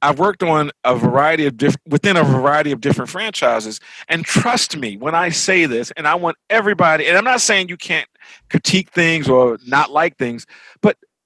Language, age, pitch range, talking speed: English, 50-69, 135-195 Hz, 195 wpm